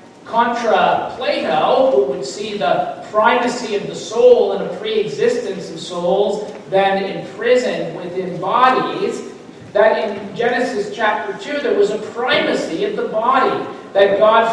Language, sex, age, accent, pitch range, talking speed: English, male, 50-69, American, 195-240 Hz, 135 wpm